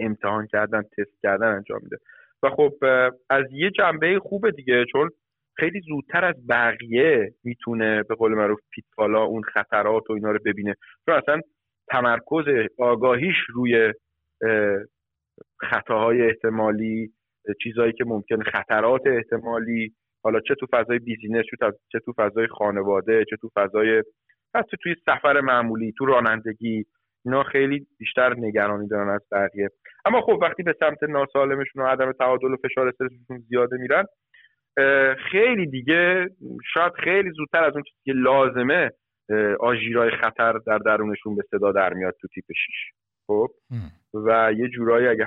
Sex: male